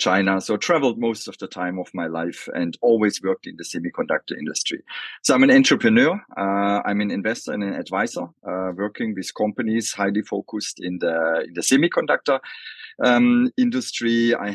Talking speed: 170 wpm